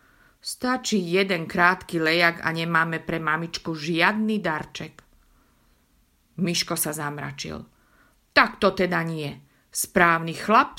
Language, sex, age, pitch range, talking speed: Slovak, female, 50-69, 150-210 Hz, 105 wpm